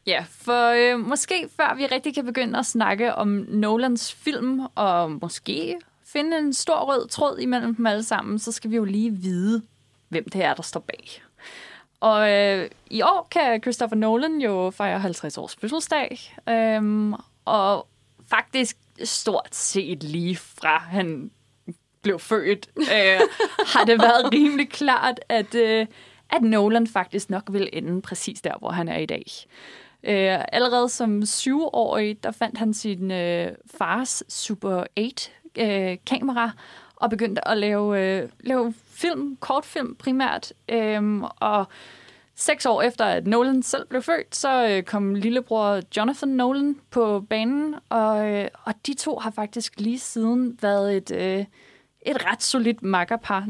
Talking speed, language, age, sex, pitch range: 145 wpm, Danish, 20-39, female, 200-255 Hz